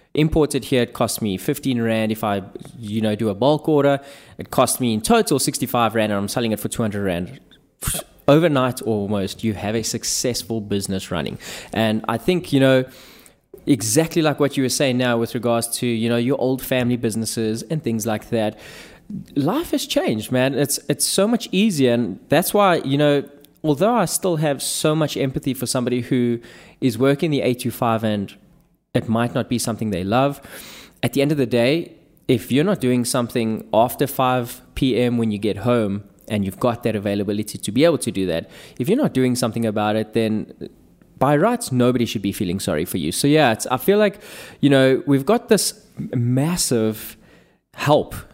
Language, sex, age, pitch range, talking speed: English, male, 20-39, 110-140 Hz, 195 wpm